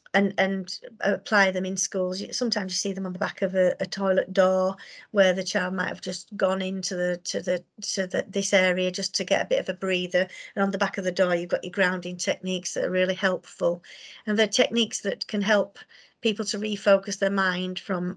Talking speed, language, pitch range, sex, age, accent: 225 wpm, English, 185-220 Hz, female, 40-59, British